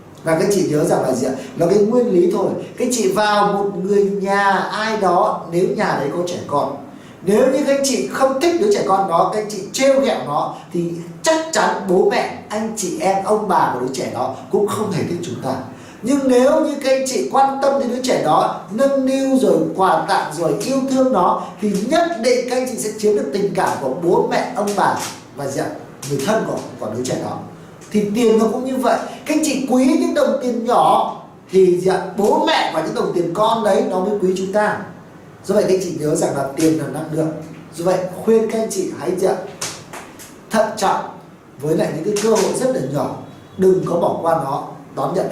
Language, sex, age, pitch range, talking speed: Vietnamese, male, 20-39, 175-245 Hz, 230 wpm